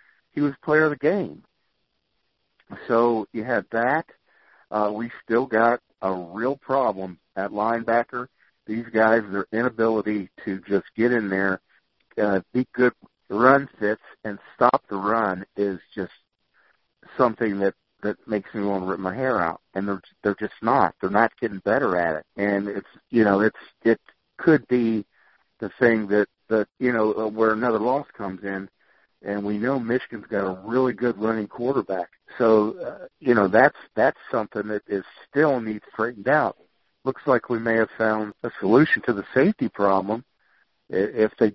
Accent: American